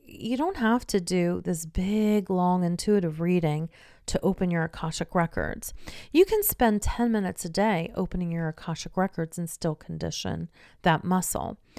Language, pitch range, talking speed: English, 160-200 Hz, 160 wpm